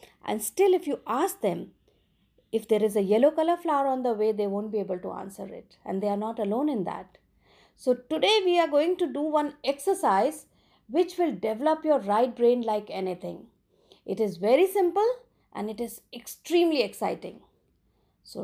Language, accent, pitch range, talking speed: English, Indian, 220-305 Hz, 185 wpm